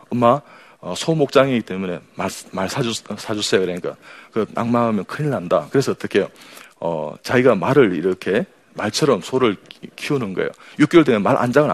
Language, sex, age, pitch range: Korean, male, 40-59, 105-140 Hz